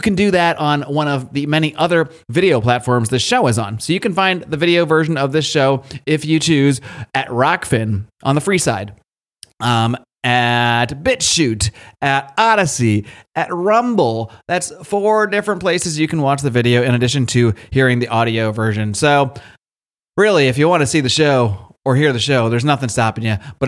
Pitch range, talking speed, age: 120-160 Hz, 190 wpm, 30-49